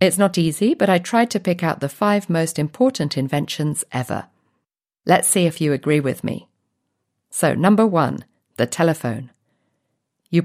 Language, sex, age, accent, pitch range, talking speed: Czech, female, 50-69, British, 140-195 Hz, 160 wpm